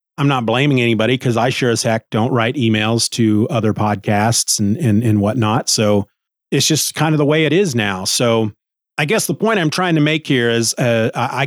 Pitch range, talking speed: 115-150 Hz, 220 wpm